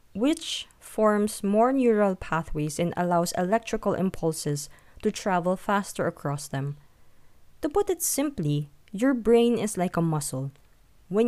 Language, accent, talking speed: English, Filipino, 135 wpm